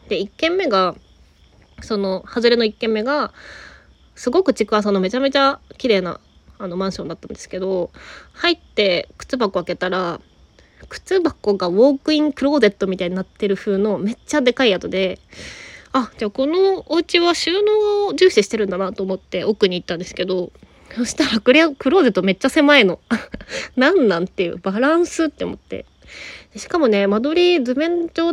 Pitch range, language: 190-290 Hz, Japanese